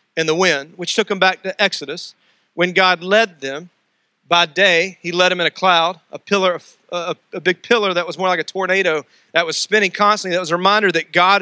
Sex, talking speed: male, 225 wpm